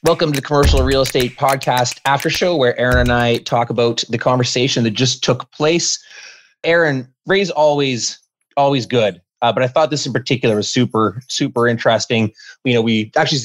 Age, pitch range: 20-39, 115-140 Hz